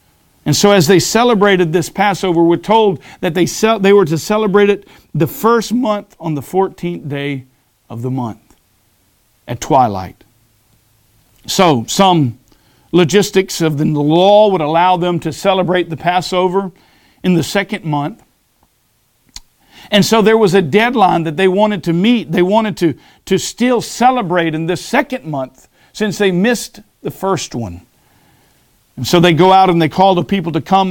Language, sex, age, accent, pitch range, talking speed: English, male, 50-69, American, 160-215 Hz, 160 wpm